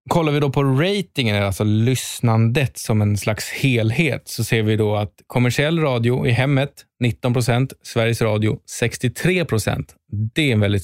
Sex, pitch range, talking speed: male, 105-135 Hz, 155 wpm